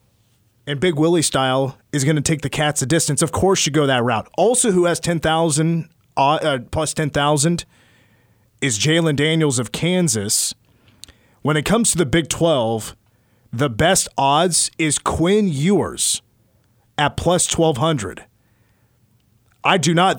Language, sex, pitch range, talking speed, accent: English, male, 115-170 Hz, 145 wpm, American